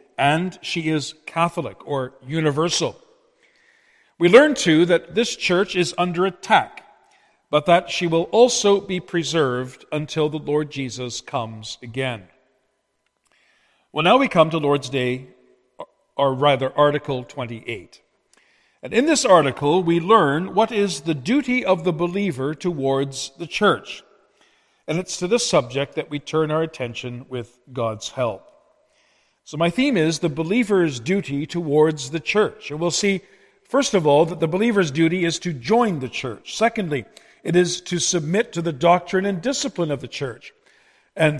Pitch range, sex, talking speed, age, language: 140-190 Hz, male, 155 wpm, 50-69, English